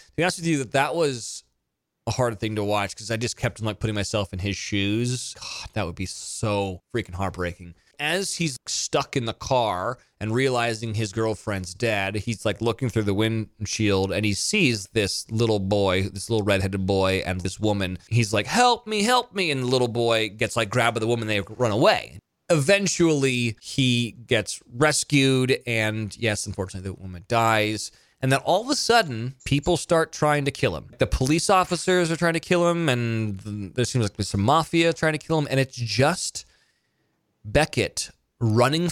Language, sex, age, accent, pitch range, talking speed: English, male, 20-39, American, 105-145 Hz, 190 wpm